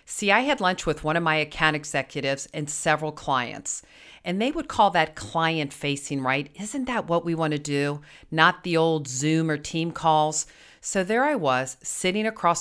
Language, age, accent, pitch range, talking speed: English, 40-59, American, 145-185 Hz, 190 wpm